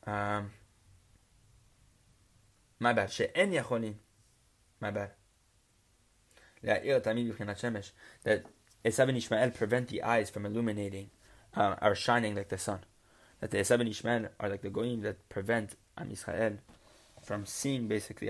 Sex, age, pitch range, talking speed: male, 20-39, 105-125 Hz, 105 wpm